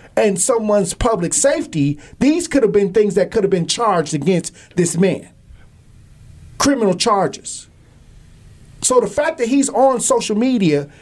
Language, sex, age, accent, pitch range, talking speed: English, male, 40-59, American, 160-250 Hz, 145 wpm